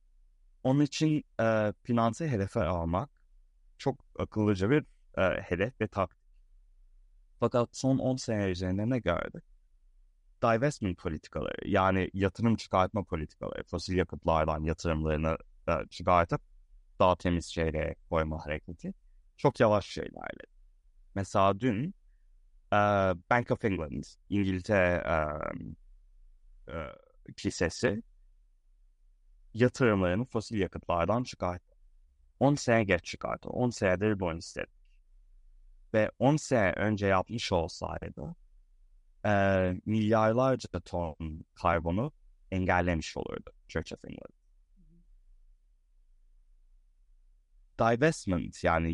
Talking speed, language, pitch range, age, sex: 95 wpm, Turkish, 80-110 Hz, 30-49, male